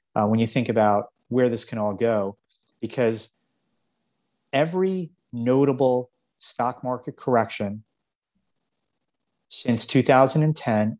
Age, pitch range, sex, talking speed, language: 30-49, 110-130 Hz, male, 100 wpm, English